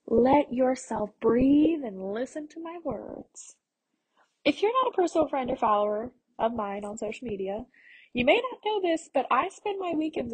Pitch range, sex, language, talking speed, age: 225-300 Hz, female, English, 180 wpm, 10-29